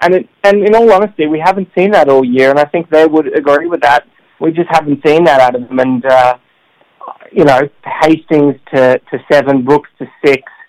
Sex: male